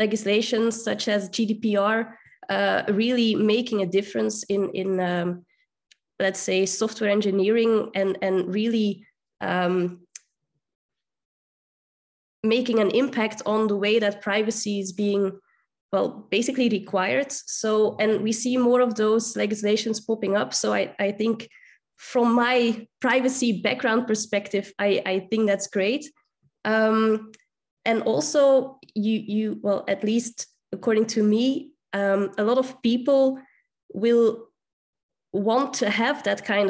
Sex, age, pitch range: female, 20-39, 200-230 Hz